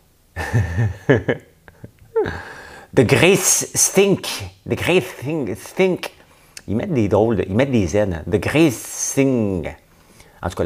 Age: 50-69